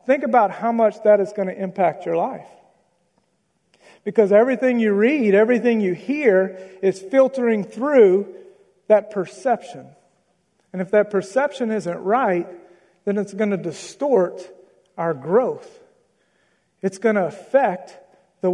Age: 40-59